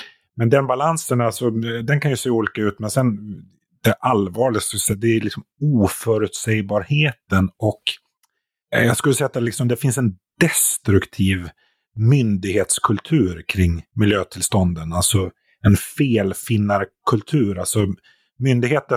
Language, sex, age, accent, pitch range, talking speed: Swedish, male, 30-49, native, 100-120 Hz, 115 wpm